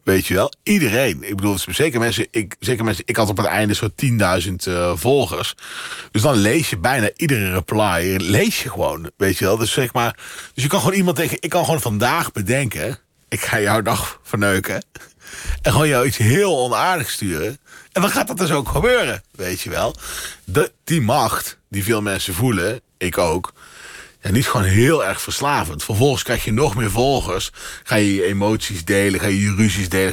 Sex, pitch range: male, 100-130 Hz